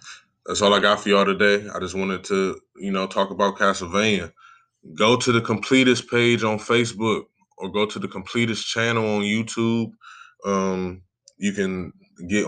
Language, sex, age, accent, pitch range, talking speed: English, male, 20-39, American, 100-120 Hz, 170 wpm